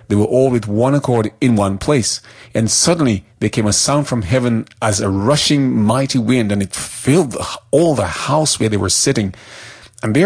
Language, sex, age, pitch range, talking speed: English, male, 40-59, 105-130 Hz, 200 wpm